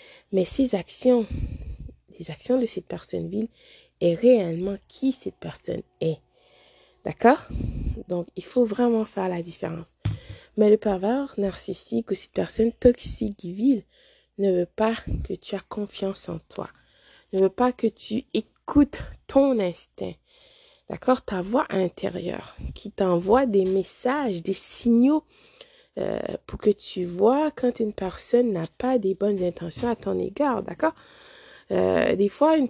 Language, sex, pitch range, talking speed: French, female, 190-275 Hz, 145 wpm